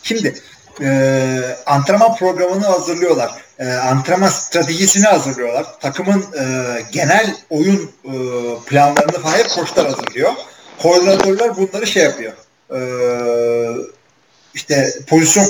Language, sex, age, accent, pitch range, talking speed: Turkish, male, 40-59, native, 130-185 Hz, 95 wpm